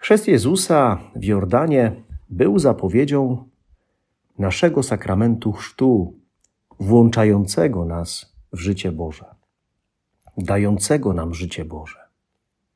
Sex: male